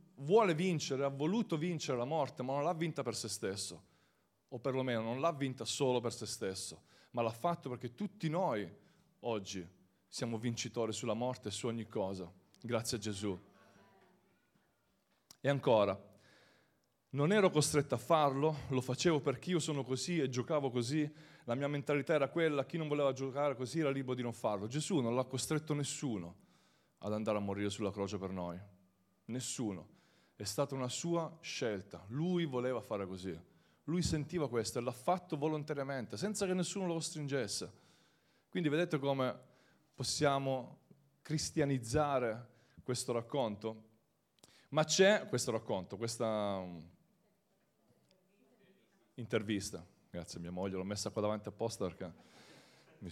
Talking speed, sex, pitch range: 145 wpm, male, 105-155 Hz